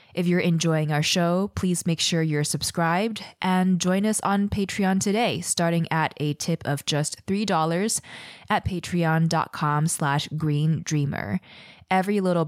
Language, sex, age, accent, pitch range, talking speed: English, female, 20-39, American, 160-200 Hz, 145 wpm